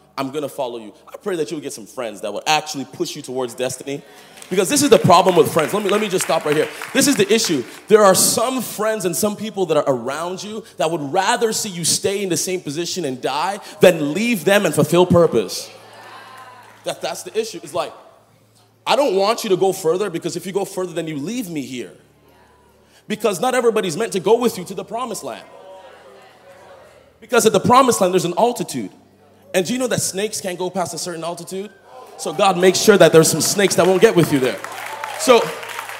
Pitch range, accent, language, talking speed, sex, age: 165-215 Hz, American, English, 230 wpm, male, 30-49